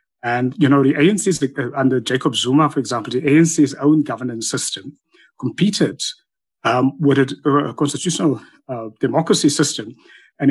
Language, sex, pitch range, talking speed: English, male, 130-160 Hz, 155 wpm